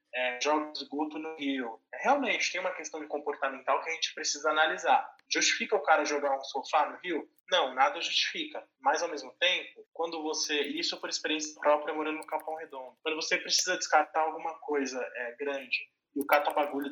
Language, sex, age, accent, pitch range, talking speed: Portuguese, male, 20-39, Brazilian, 140-175 Hz, 175 wpm